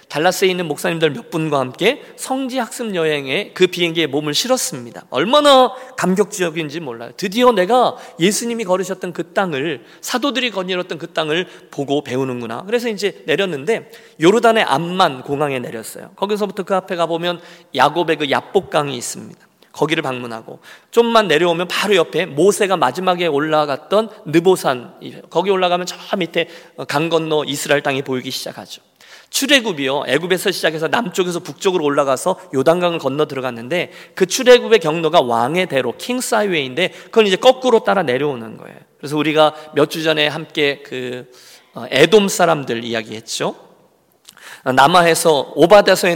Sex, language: male, Korean